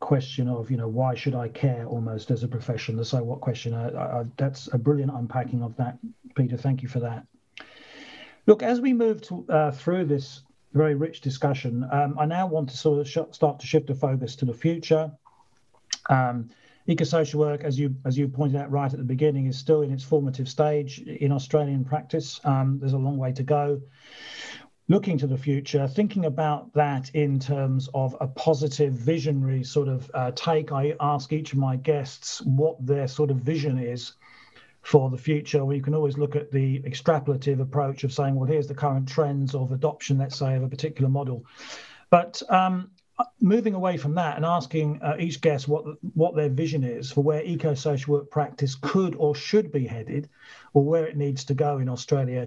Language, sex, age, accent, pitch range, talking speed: English, male, 40-59, British, 130-155 Hz, 200 wpm